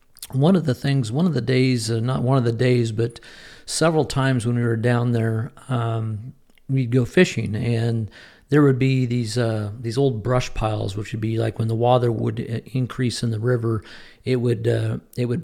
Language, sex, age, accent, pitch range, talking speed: English, male, 50-69, American, 115-130 Hz, 205 wpm